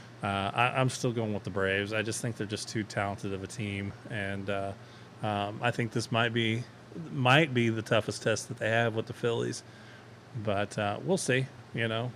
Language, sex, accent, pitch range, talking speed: English, male, American, 110-125 Hz, 210 wpm